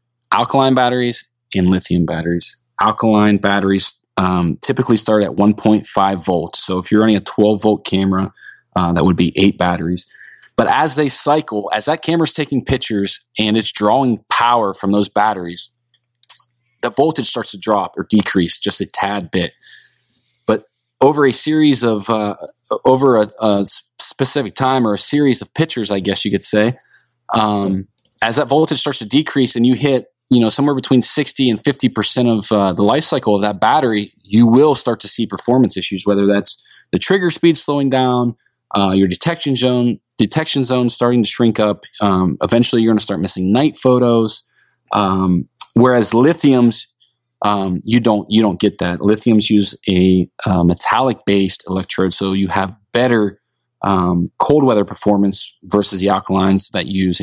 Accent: American